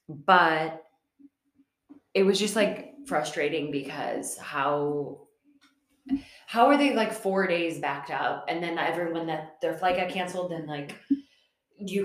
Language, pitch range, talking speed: English, 165-265 Hz, 135 wpm